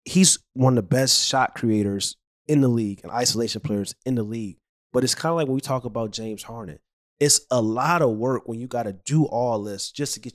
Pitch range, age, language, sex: 115-160 Hz, 30-49, English, male